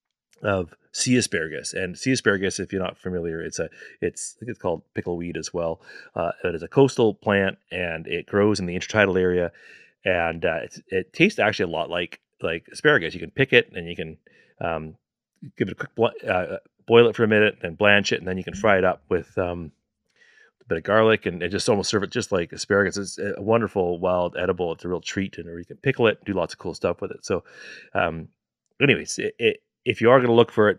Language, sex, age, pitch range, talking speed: English, male, 30-49, 85-110 Hz, 240 wpm